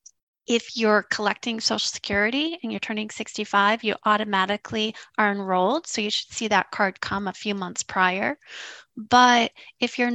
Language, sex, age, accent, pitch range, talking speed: English, female, 30-49, American, 205-245 Hz, 160 wpm